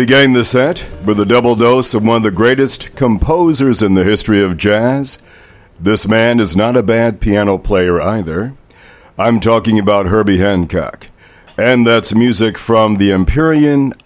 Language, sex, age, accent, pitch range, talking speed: English, male, 60-79, American, 100-120 Hz, 165 wpm